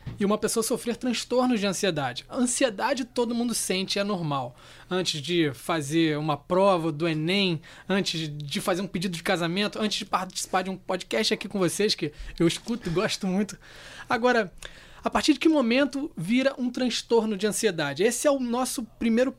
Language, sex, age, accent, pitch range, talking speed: Portuguese, male, 20-39, Brazilian, 175-225 Hz, 180 wpm